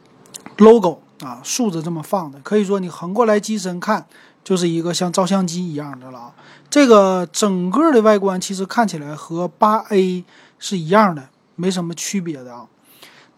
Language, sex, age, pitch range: Chinese, male, 30-49, 175-220 Hz